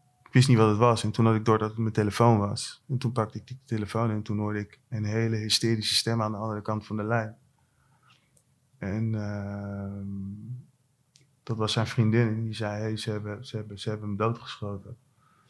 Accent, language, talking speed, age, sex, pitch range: Dutch, Dutch, 215 wpm, 20-39, male, 110-130 Hz